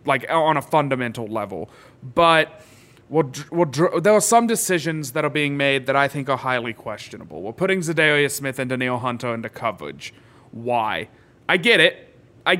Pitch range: 135-170 Hz